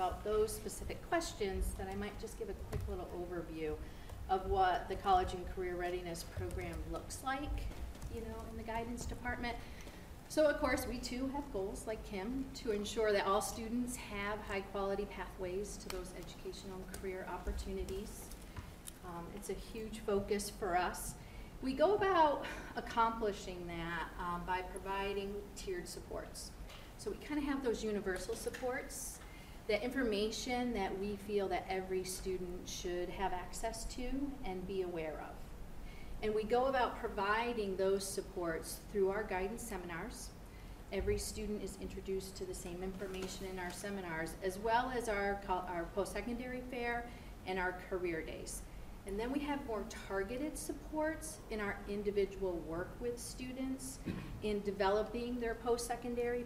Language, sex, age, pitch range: English, female, 40-59, 185-240 Hz